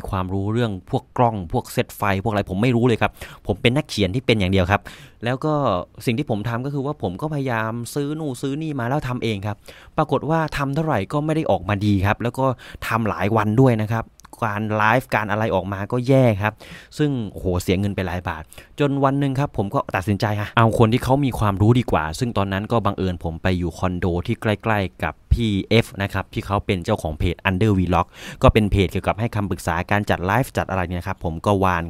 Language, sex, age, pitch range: English, male, 20-39, 95-120 Hz